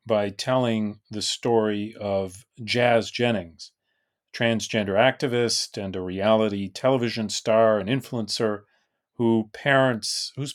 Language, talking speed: English, 110 wpm